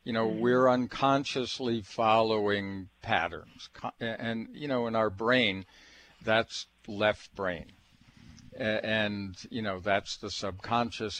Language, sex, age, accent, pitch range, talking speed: English, male, 60-79, American, 95-115 Hz, 115 wpm